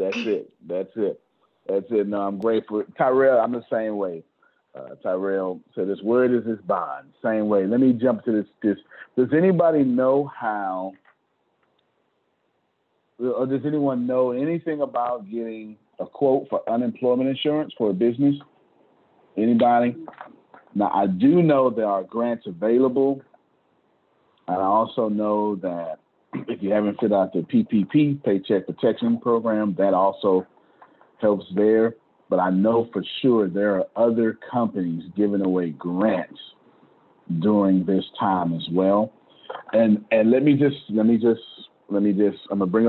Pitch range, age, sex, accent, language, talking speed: 105-135 Hz, 40-59, male, American, English, 150 wpm